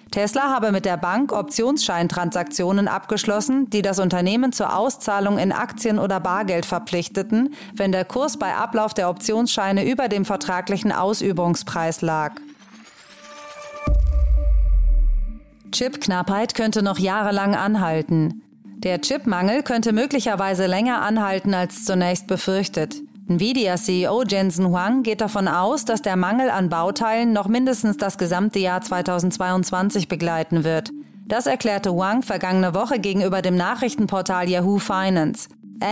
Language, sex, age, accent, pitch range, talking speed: German, female, 30-49, German, 180-220 Hz, 120 wpm